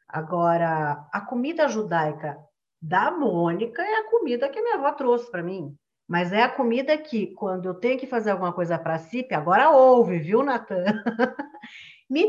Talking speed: 170 wpm